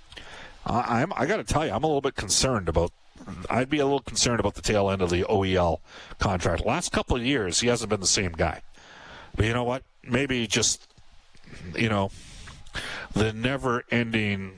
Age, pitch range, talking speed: 50-69, 100-150 Hz, 195 wpm